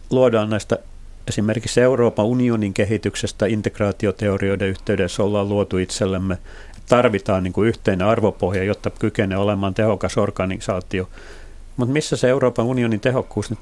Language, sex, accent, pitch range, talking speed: Finnish, male, native, 95-125 Hz, 115 wpm